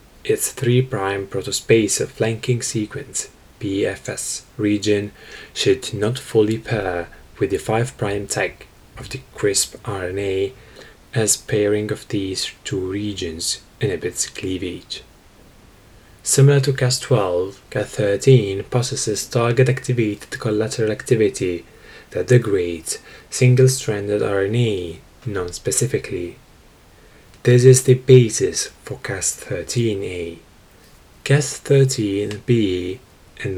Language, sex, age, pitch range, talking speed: English, male, 10-29, 100-125 Hz, 90 wpm